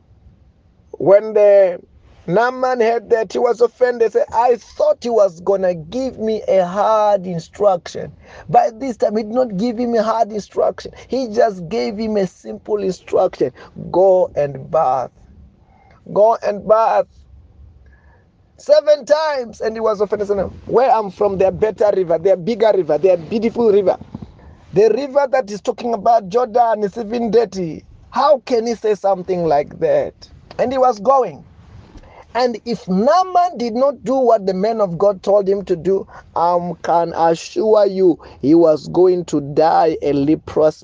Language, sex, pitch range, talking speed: English, male, 160-230 Hz, 165 wpm